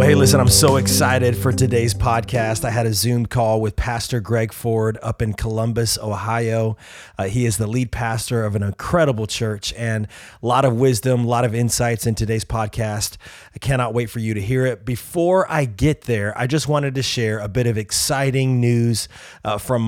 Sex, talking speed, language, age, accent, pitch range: male, 205 wpm, English, 30-49, American, 110-135 Hz